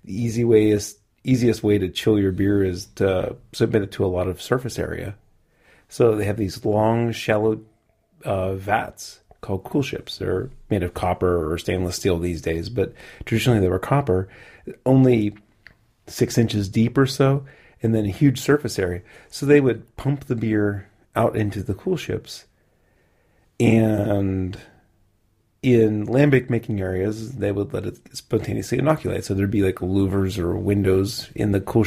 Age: 30-49